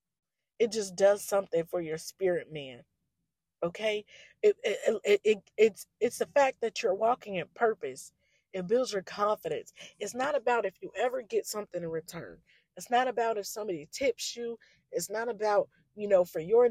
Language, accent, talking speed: English, American, 180 wpm